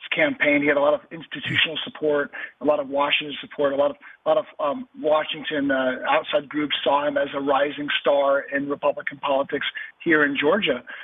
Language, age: English, 40-59